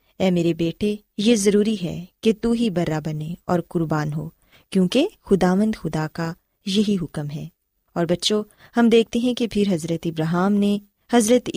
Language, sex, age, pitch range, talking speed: Urdu, female, 20-39, 175-230 Hz, 165 wpm